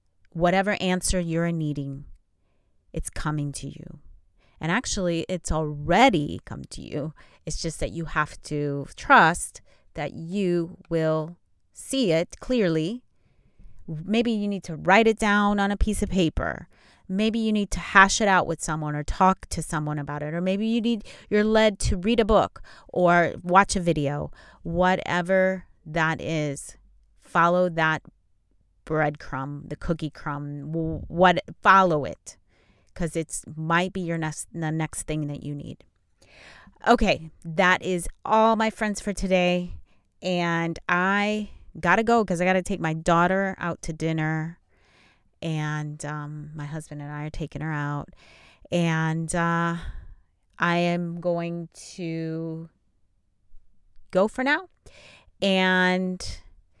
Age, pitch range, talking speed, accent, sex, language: 30-49, 150-185 Hz, 145 wpm, American, female, English